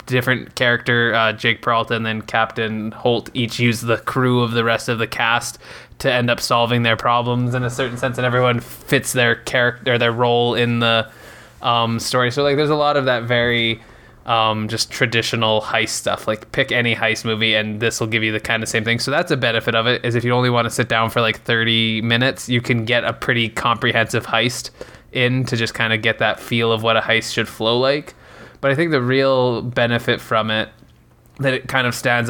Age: 20-39